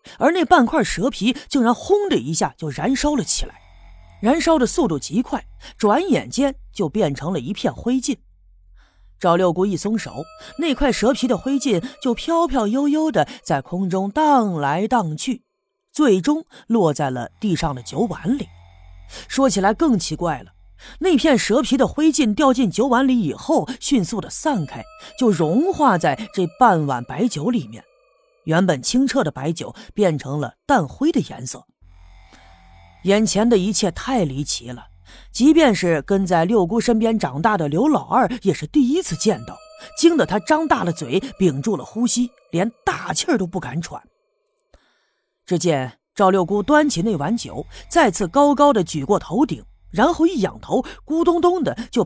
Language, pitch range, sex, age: Chinese, 165-275 Hz, female, 30-49